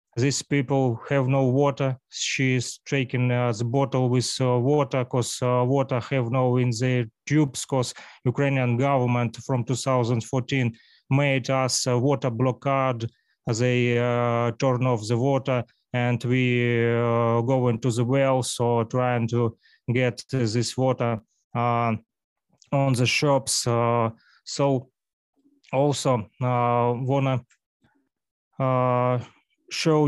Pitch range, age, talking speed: 120-135 Hz, 20-39, 130 wpm